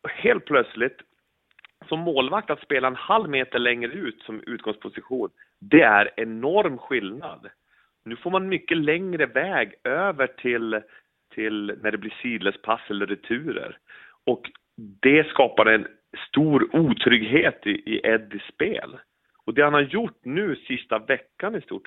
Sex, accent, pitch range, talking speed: male, Swedish, 110-135 Hz, 145 wpm